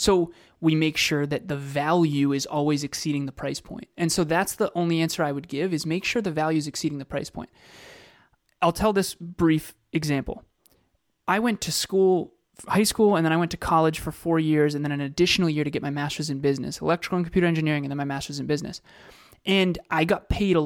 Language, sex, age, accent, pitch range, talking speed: English, male, 30-49, American, 145-175 Hz, 225 wpm